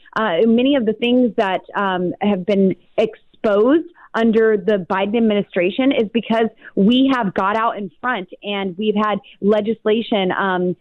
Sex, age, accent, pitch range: female, 30-49, American, 200-235 Hz